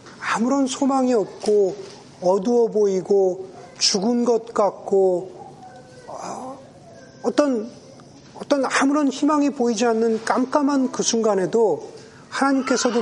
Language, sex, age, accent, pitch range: Korean, male, 40-59, native, 180-240 Hz